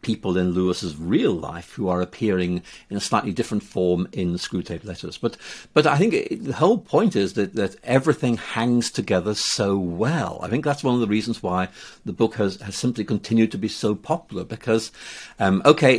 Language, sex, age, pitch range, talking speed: English, male, 60-79, 100-135 Hz, 205 wpm